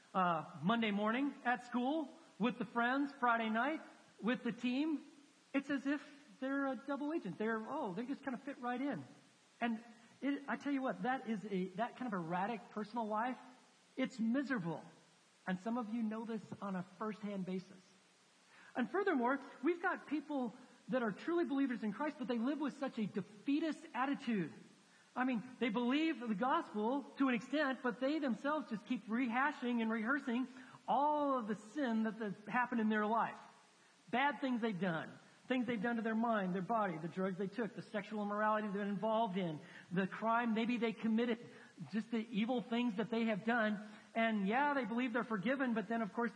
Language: English